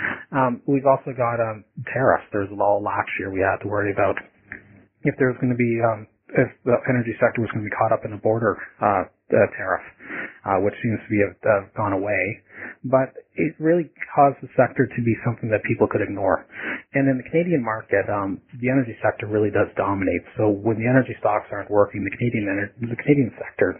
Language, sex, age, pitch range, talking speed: English, male, 30-49, 105-130 Hz, 215 wpm